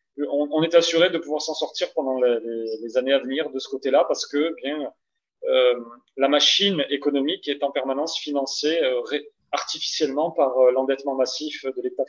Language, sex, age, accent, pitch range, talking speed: French, male, 30-49, French, 135-195 Hz, 185 wpm